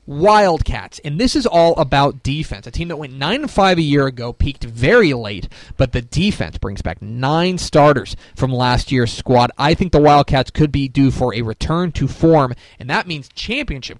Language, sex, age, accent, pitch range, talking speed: English, male, 30-49, American, 120-160 Hz, 195 wpm